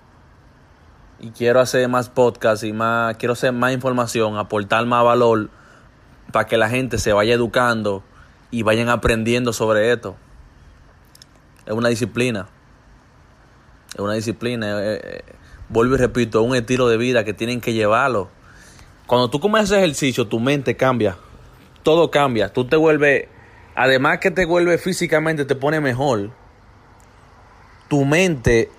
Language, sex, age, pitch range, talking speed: English, male, 30-49, 110-125 Hz, 145 wpm